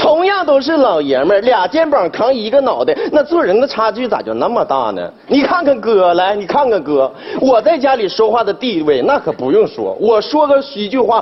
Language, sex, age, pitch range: Chinese, male, 40-59, 195-290 Hz